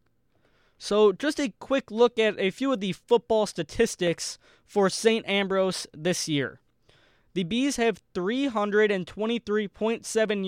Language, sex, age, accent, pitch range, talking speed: English, male, 20-39, American, 170-215 Hz, 120 wpm